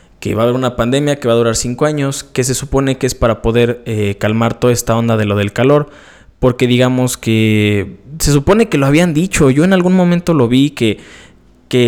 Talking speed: 225 wpm